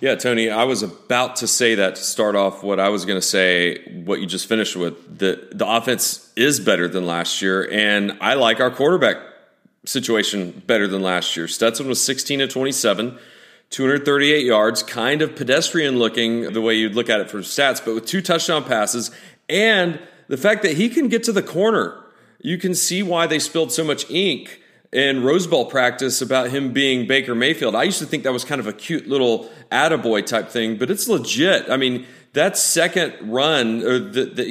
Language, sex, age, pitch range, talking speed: English, male, 30-49, 115-160 Hz, 195 wpm